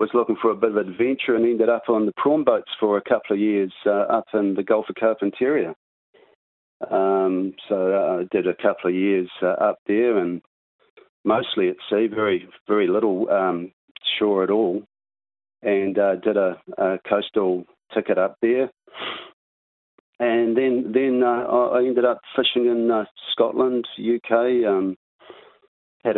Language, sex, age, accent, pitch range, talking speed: English, male, 40-59, Australian, 95-115 Hz, 165 wpm